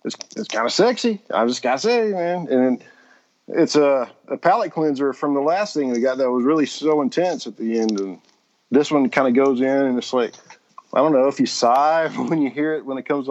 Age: 40-59